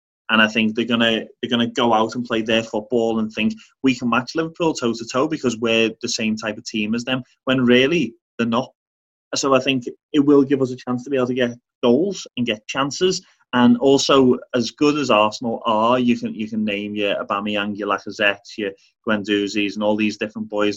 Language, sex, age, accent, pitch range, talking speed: English, male, 30-49, British, 105-125 Hz, 220 wpm